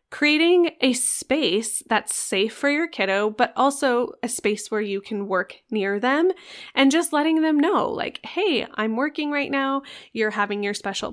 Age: 20-39